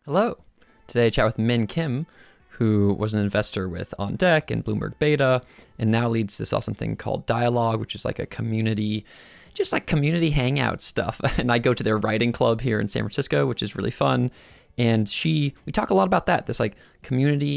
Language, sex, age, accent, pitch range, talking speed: English, male, 20-39, American, 110-135 Hz, 210 wpm